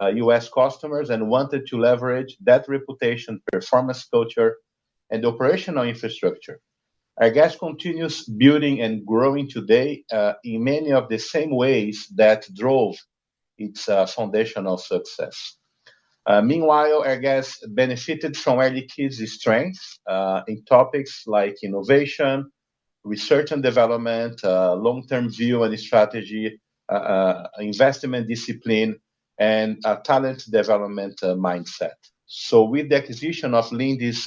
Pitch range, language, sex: 110-140 Hz, English, male